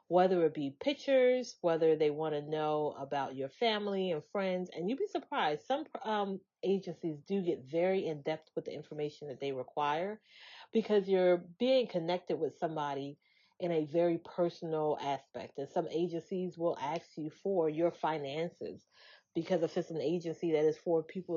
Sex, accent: female, American